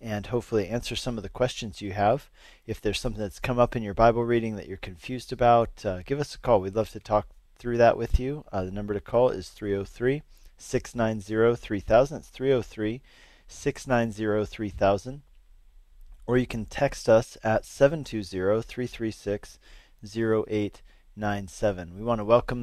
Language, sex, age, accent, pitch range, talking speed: English, male, 40-59, American, 105-125 Hz, 150 wpm